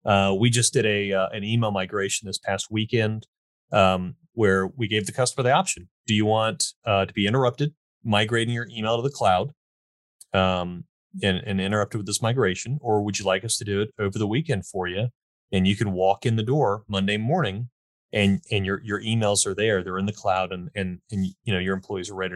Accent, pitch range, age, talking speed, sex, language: American, 95-120 Hz, 30-49, 220 wpm, male, English